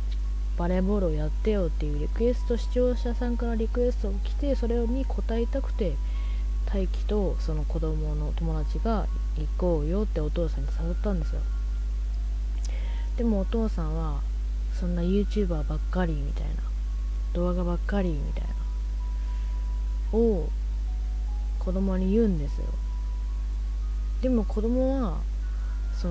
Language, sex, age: Japanese, female, 20-39